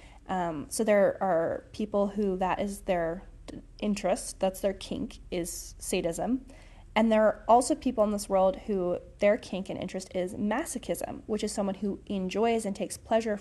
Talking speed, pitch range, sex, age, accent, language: 170 wpm, 180-215 Hz, female, 30-49, American, English